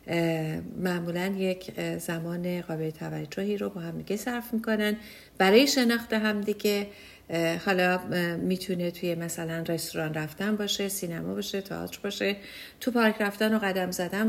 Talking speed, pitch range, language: 135 wpm, 170-220 Hz, English